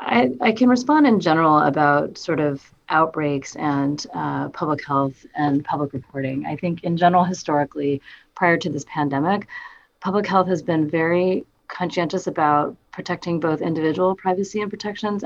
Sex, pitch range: female, 145-185 Hz